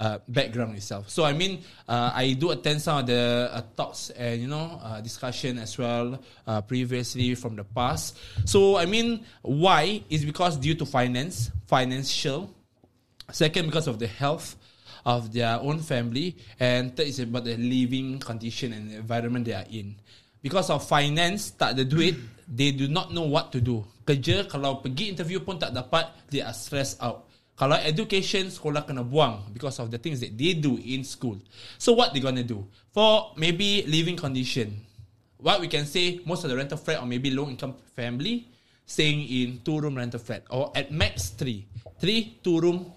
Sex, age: male, 20-39